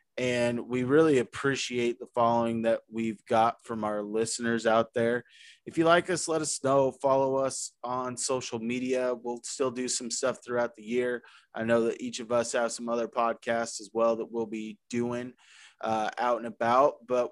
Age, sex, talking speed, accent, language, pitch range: 20-39, male, 190 wpm, American, English, 115-135 Hz